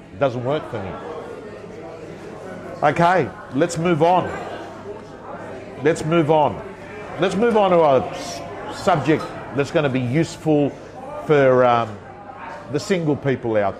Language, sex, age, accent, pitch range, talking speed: English, male, 50-69, Australian, 120-160 Hz, 120 wpm